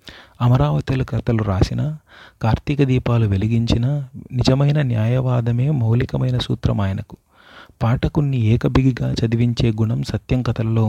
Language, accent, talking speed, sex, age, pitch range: Telugu, native, 95 wpm, male, 30-49, 110-125 Hz